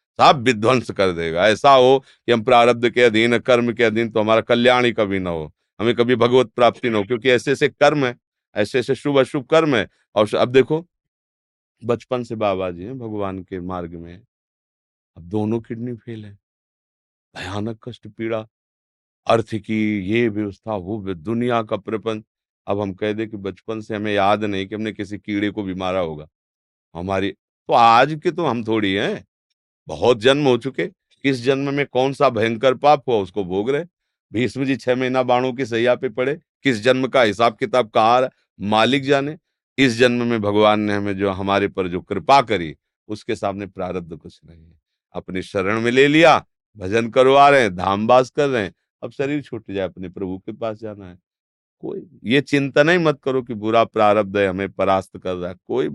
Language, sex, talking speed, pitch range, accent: Hindi, male, 190 wpm, 95-125 Hz, native